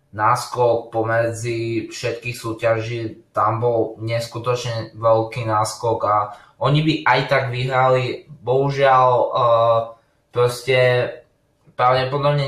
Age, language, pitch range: 20-39, Slovak, 115-135 Hz